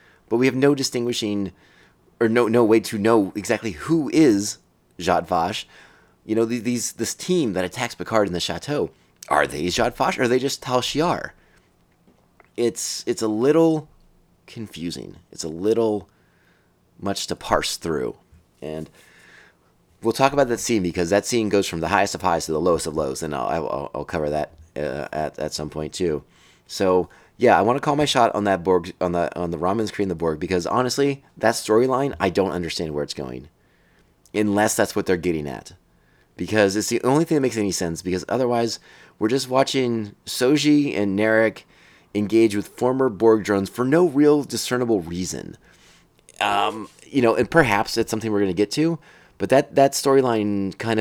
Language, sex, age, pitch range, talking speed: English, male, 30-49, 85-120 Hz, 185 wpm